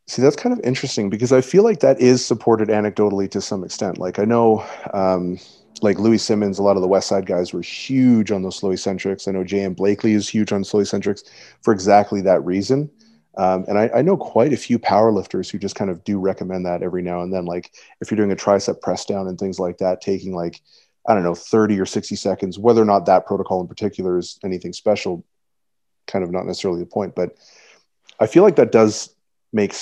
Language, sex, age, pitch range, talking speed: English, male, 30-49, 95-110 Hz, 230 wpm